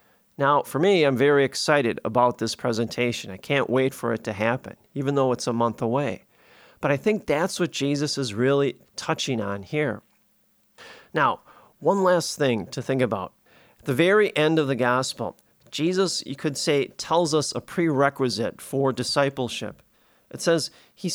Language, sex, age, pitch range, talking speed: English, male, 40-59, 125-160 Hz, 170 wpm